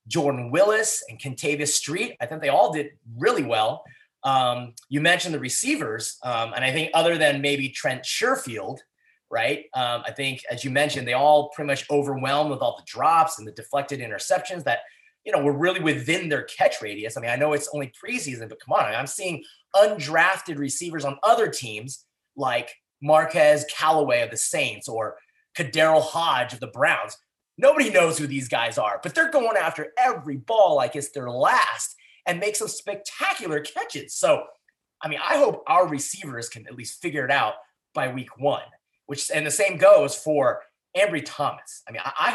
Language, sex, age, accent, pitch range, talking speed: English, male, 30-49, American, 135-185 Hz, 190 wpm